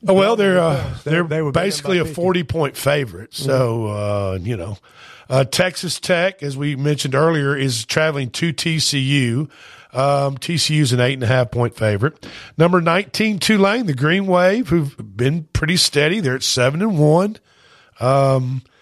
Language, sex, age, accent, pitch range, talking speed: English, male, 50-69, American, 130-185 Hz, 155 wpm